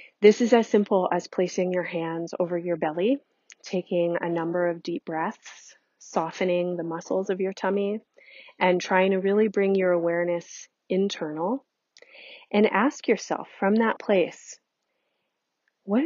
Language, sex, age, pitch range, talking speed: English, female, 30-49, 175-220 Hz, 140 wpm